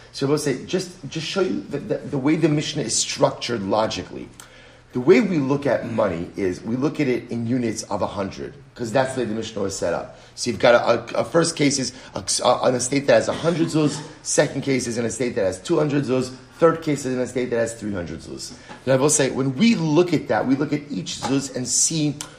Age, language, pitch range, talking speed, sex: 40-59, English, 135-170 Hz, 255 wpm, male